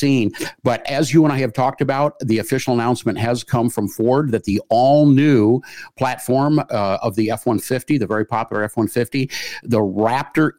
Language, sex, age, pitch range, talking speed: English, male, 50-69, 105-135 Hz, 165 wpm